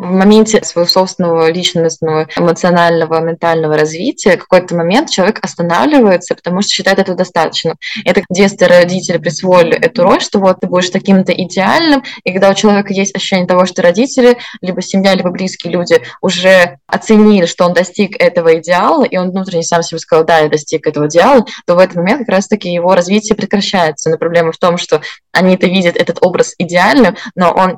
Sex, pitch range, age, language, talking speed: female, 165-200 Hz, 20-39, Russian, 180 wpm